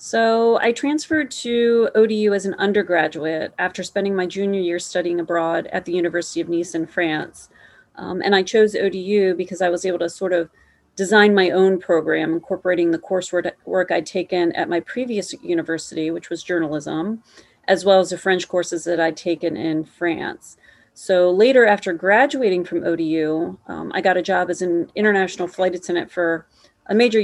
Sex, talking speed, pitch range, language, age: female, 175 wpm, 170-190 Hz, English, 30-49